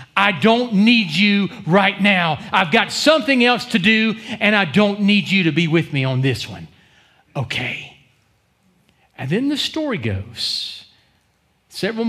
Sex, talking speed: male, 155 wpm